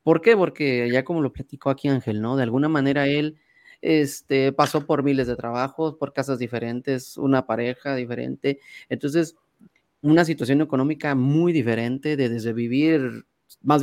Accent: Mexican